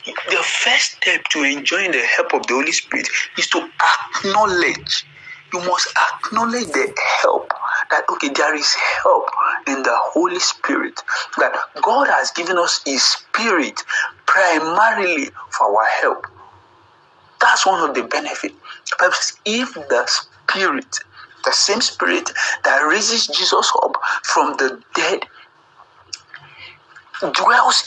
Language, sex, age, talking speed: English, male, 50-69, 125 wpm